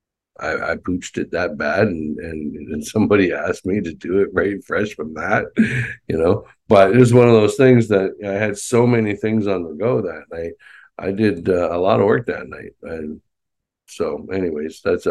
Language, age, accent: English, 60-79, American